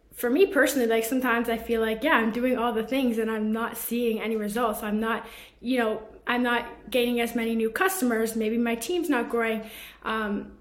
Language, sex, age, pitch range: English, female, 20-39, 225-250 Hz